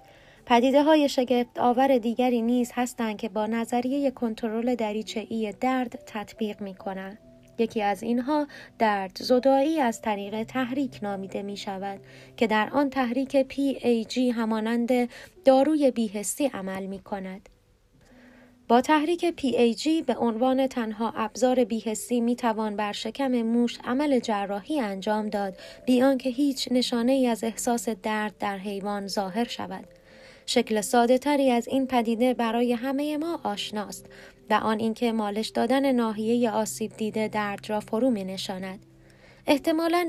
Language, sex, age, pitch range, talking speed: Persian, female, 20-39, 210-255 Hz, 125 wpm